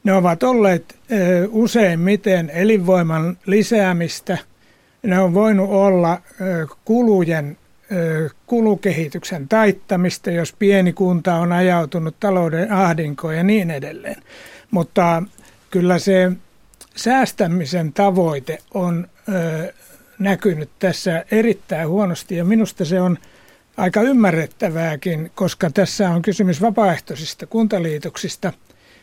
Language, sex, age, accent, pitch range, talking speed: Finnish, male, 60-79, native, 170-200 Hz, 95 wpm